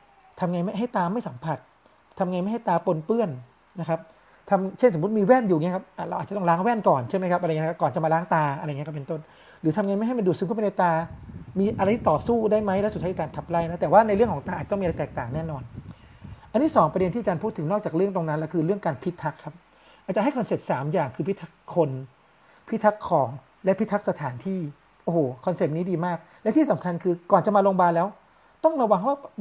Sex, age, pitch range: male, 30-49, 160-205 Hz